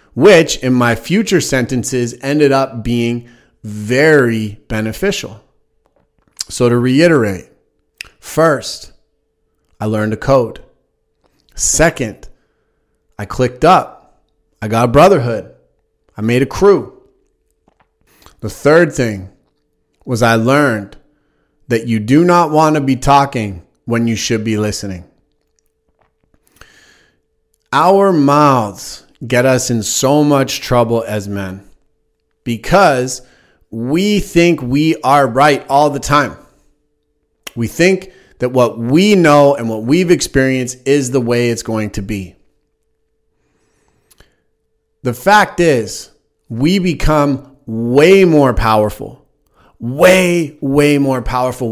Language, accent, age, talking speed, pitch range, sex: English, American, 30-49, 115 wpm, 110-145 Hz, male